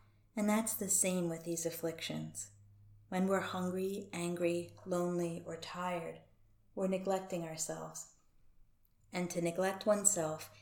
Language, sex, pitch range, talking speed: English, female, 155-180 Hz, 120 wpm